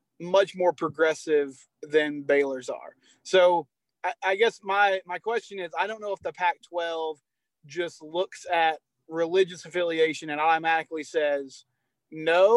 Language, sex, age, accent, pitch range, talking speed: English, male, 30-49, American, 155-180 Hz, 140 wpm